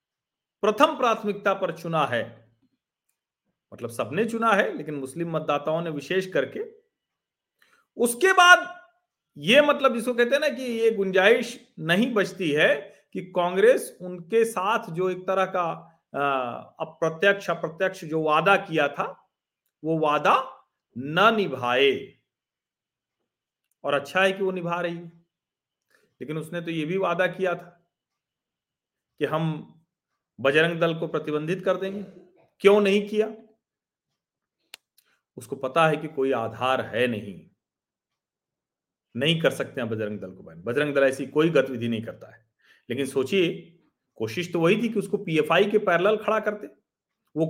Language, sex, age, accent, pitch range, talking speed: Hindi, male, 40-59, native, 150-205 Hz, 140 wpm